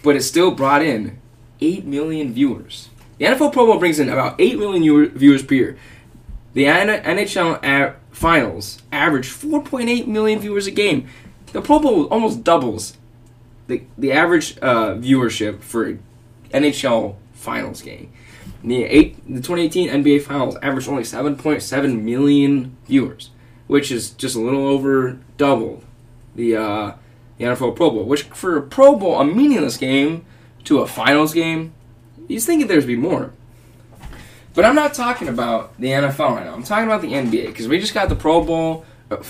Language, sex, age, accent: English, male, 20-39, American